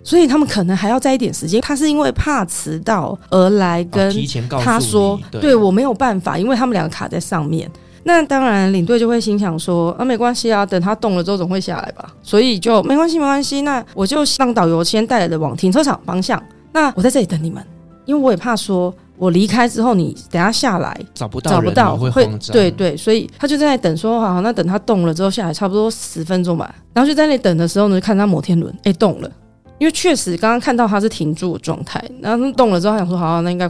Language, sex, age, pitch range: Chinese, female, 30-49, 175-240 Hz